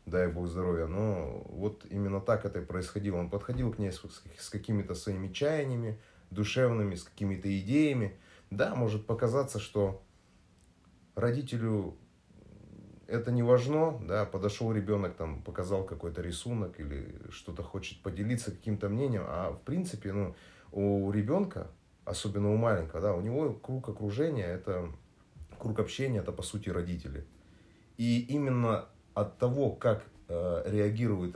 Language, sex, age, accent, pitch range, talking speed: Russian, male, 30-49, native, 90-110 Hz, 135 wpm